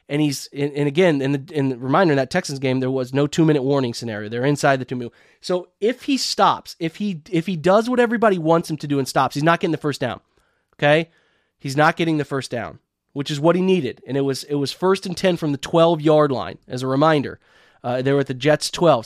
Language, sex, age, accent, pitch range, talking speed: English, male, 30-49, American, 150-200 Hz, 260 wpm